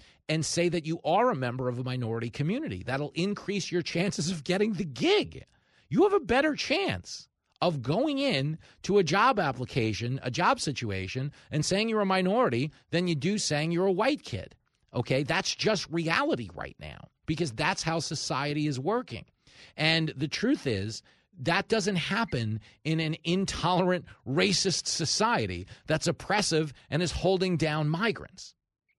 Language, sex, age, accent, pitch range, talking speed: English, male, 40-59, American, 110-170 Hz, 160 wpm